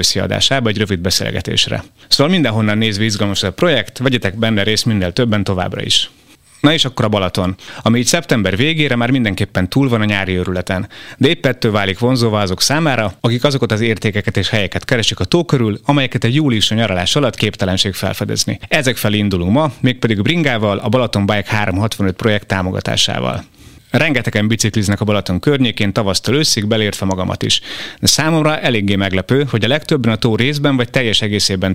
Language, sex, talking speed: Hungarian, male, 170 wpm